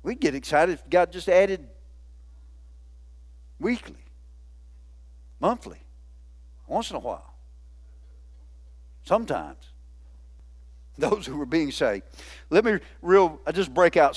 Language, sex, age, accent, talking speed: English, male, 50-69, American, 110 wpm